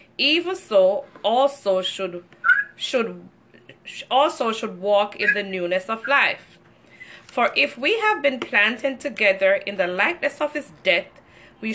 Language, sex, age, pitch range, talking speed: English, female, 20-39, 185-270 Hz, 140 wpm